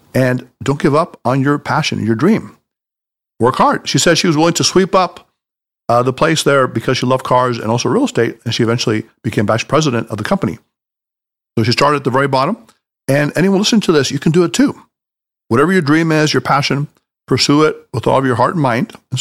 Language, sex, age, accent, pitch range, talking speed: English, male, 50-69, American, 125-160 Hz, 230 wpm